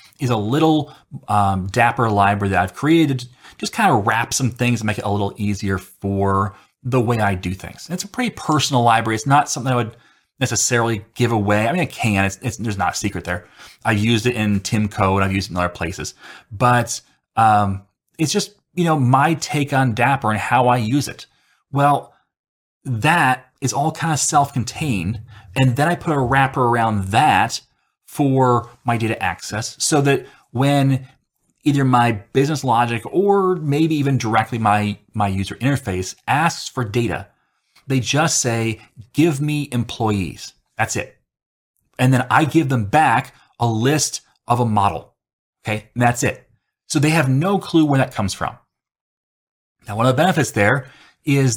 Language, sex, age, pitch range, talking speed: English, male, 30-49, 105-140 Hz, 180 wpm